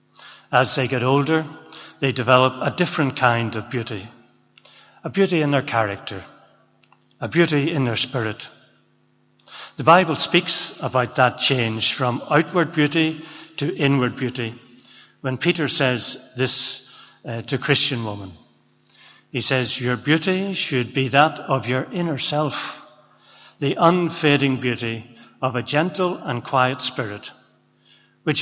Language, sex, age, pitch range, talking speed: English, male, 60-79, 120-145 Hz, 130 wpm